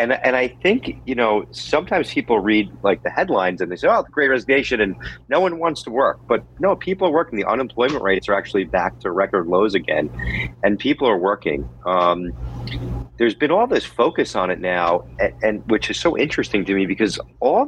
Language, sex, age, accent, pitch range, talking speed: English, male, 40-59, American, 90-125 Hz, 210 wpm